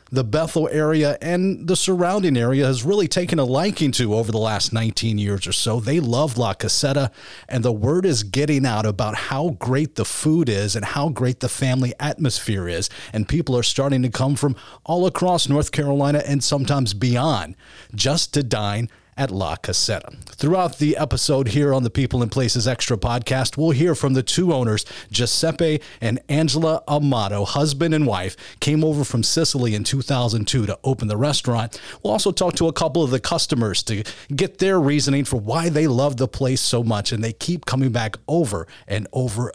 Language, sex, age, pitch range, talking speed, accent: English, male, 30-49, 115-155 Hz, 190 wpm, American